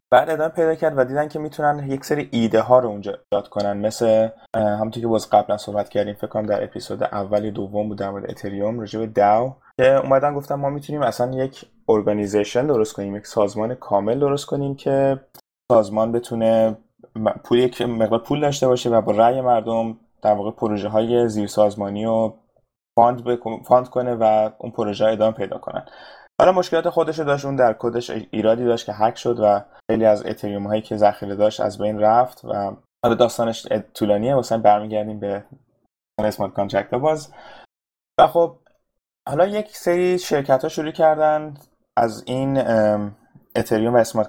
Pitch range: 110-135 Hz